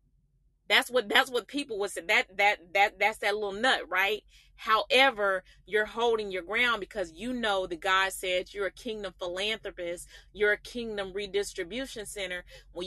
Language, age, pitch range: Finnish, 30-49, 190-230 Hz